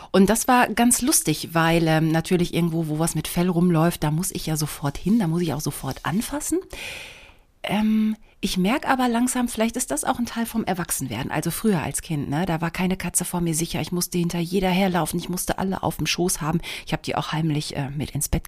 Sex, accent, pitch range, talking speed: female, German, 160-200 Hz, 235 wpm